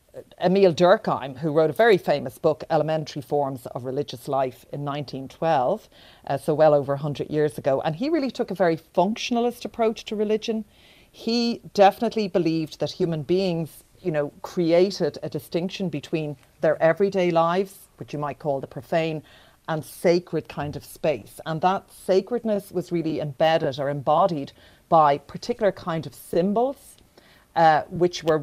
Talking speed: 155 wpm